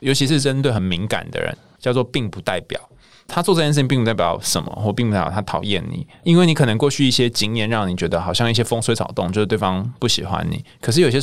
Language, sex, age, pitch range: Chinese, male, 20-39, 100-140 Hz